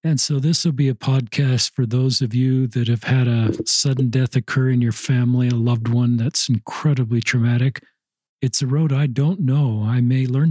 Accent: American